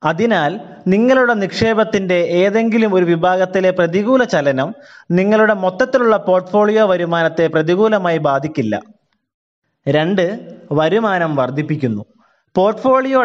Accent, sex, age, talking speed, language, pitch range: native, male, 20-39, 80 wpm, Malayalam, 170-225 Hz